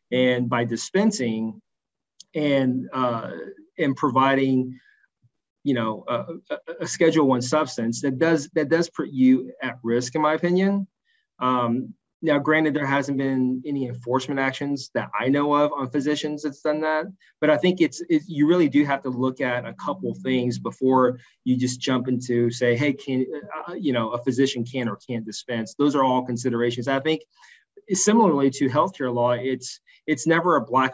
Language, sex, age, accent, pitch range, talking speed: English, male, 30-49, American, 120-145 Hz, 175 wpm